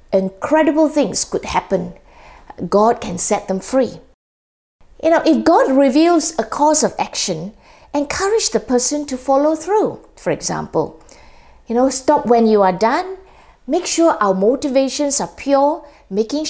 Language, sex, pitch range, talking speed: English, female, 215-300 Hz, 145 wpm